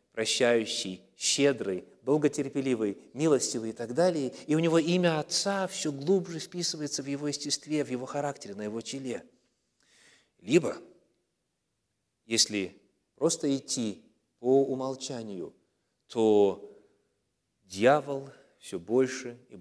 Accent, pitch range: native, 105-150 Hz